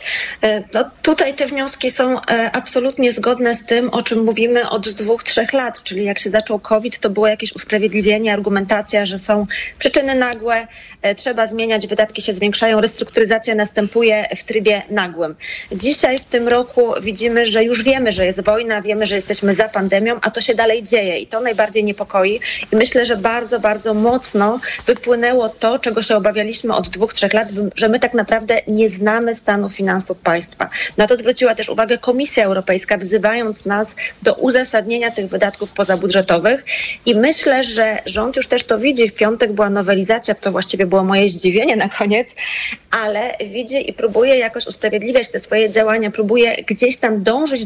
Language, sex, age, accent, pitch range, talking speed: Polish, female, 30-49, native, 210-240 Hz, 170 wpm